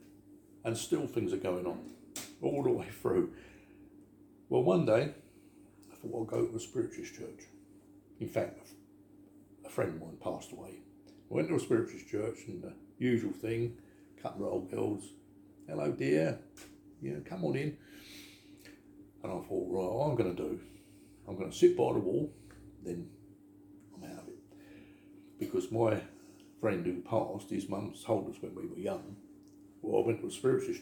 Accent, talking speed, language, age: British, 170 wpm, English, 60-79